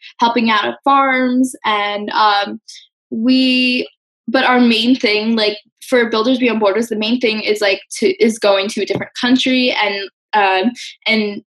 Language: English